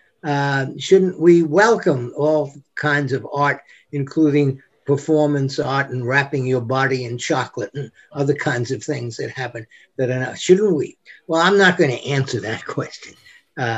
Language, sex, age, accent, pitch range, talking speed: English, male, 60-79, American, 125-150 Hz, 160 wpm